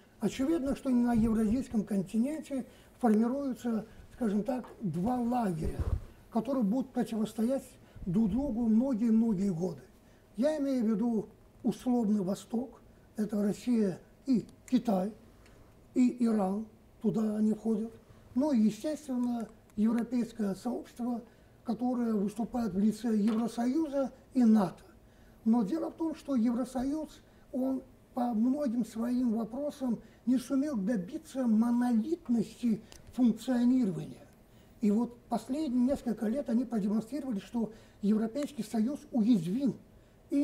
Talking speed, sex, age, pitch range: 105 wpm, male, 50-69, 215-255 Hz